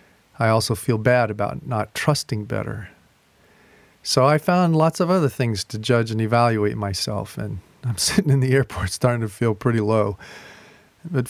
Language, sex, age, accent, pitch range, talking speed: English, male, 40-59, American, 105-135 Hz, 170 wpm